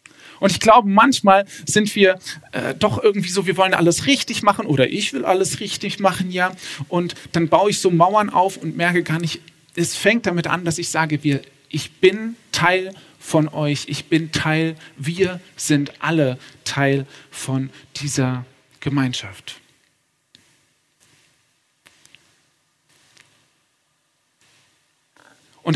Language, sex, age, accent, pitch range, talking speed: German, male, 40-59, German, 145-190 Hz, 135 wpm